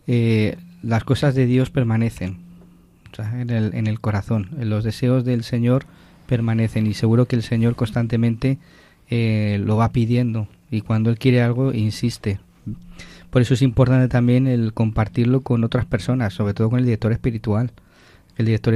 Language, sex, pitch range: Spanish, male, 110-130 Hz